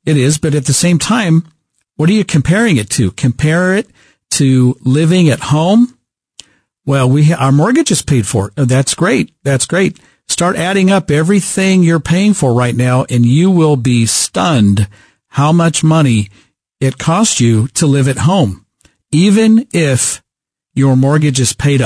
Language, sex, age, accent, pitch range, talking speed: English, male, 50-69, American, 125-165 Hz, 165 wpm